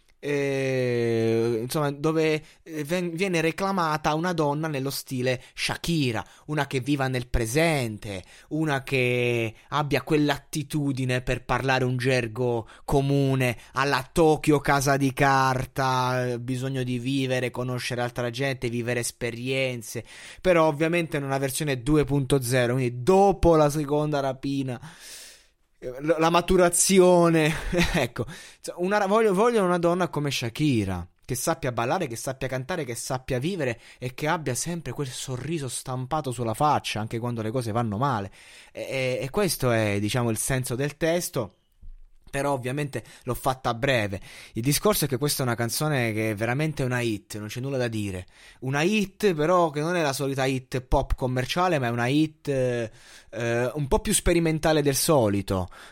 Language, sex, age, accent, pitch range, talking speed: Italian, male, 20-39, native, 120-155 Hz, 145 wpm